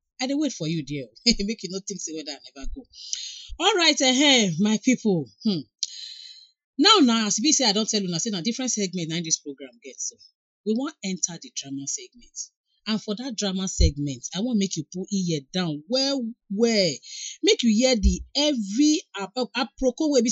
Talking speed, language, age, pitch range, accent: 215 wpm, English, 40-59, 155-245 Hz, Nigerian